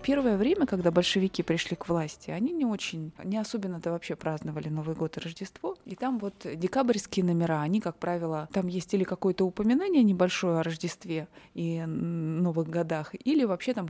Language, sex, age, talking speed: Russian, female, 20-39, 175 wpm